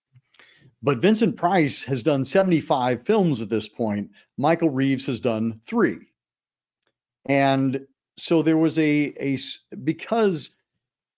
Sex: male